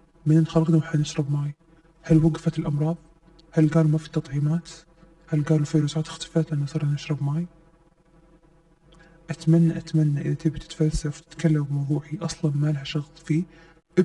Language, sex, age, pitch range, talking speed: Arabic, male, 20-39, 150-165 Hz, 135 wpm